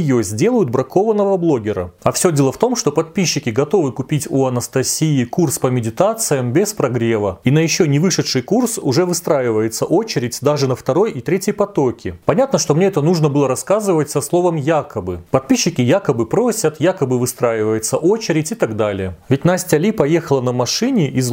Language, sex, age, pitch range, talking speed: Russian, male, 30-49, 125-180 Hz, 170 wpm